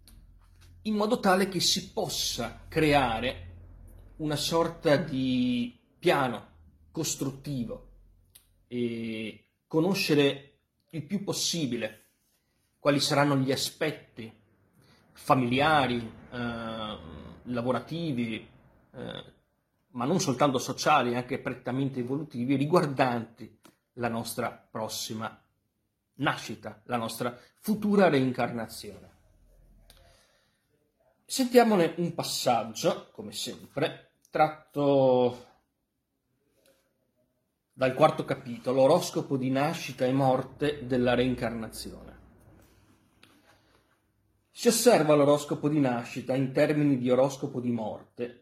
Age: 40-59